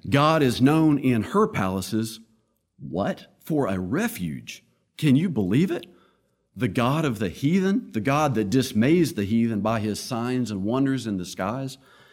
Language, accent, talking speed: English, American, 165 wpm